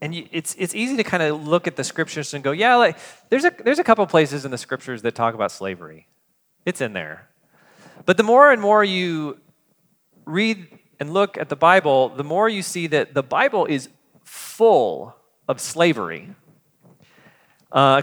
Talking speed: 185 wpm